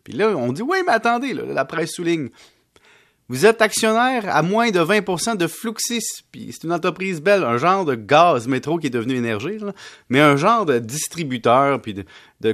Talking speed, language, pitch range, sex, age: 195 wpm, French, 130-195 Hz, male, 30-49